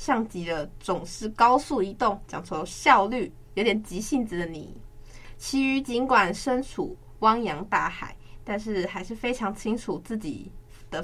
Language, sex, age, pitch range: Chinese, female, 20-39, 180-235 Hz